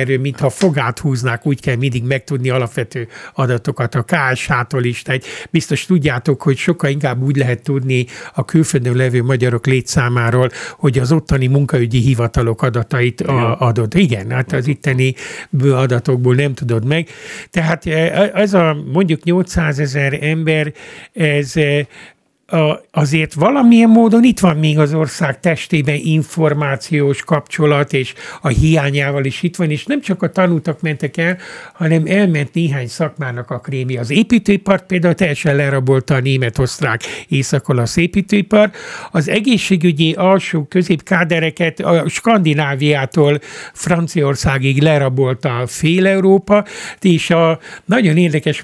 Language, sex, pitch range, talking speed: Hungarian, male, 135-170 Hz, 125 wpm